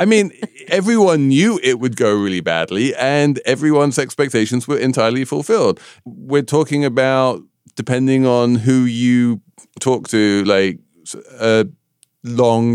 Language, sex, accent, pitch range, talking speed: English, male, British, 85-120 Hz, 125 wpm